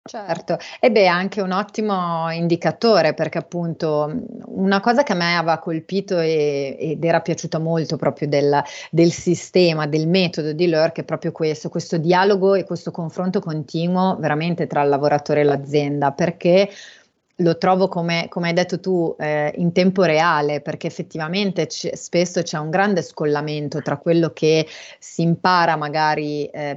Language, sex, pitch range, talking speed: Italian, female, 155-185 Hz, 160 wpm